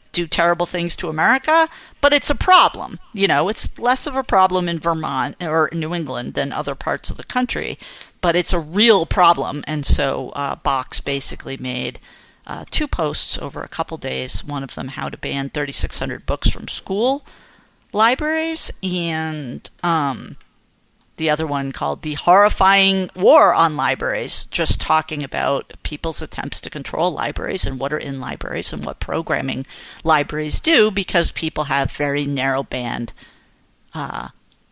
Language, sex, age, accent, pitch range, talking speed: English, female, 50-69, American, 150-190 Hz, 160 wpm